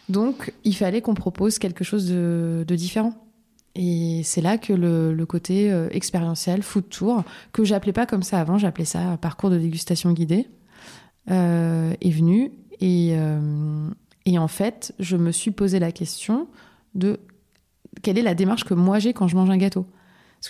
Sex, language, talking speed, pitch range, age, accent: female, French, 180 wpm, 170-205 Hz, 20-39, French